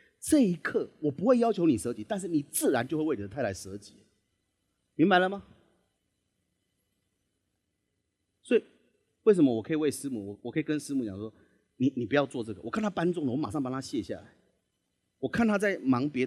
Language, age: Chinese, 30-49